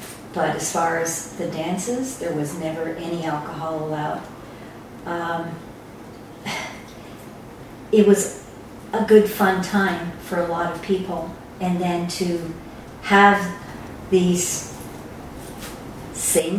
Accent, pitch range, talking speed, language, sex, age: American, 165-210 Hz, 110 wpm, English, female, 50-69